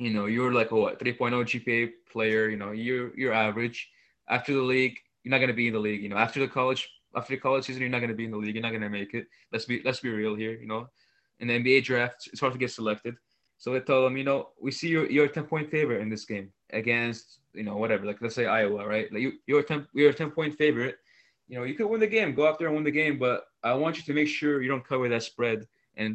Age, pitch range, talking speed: 20-39, 110-135 Hz, 285 wpm